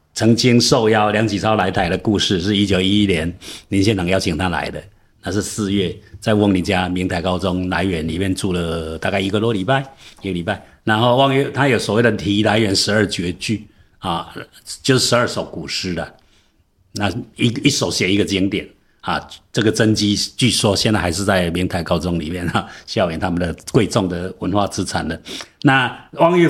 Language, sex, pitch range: Chinese, male, 90-110 Hz